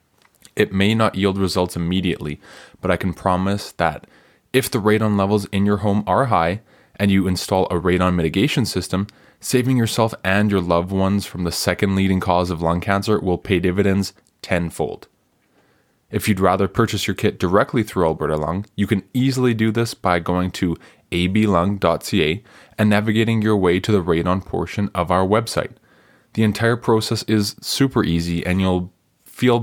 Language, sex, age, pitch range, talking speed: English, male, 20-39, 90-105 Hz, 170 wpm